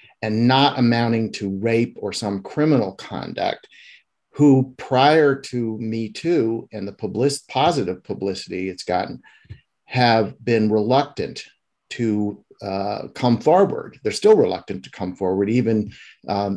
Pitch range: 100-120 Hz